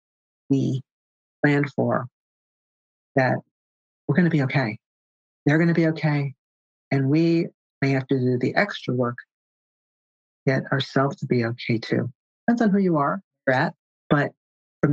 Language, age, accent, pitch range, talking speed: English, 50-69, American, 135-180 Hz, 155 wpm